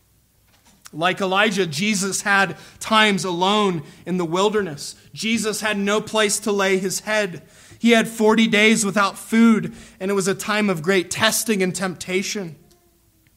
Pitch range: 150-205 Hz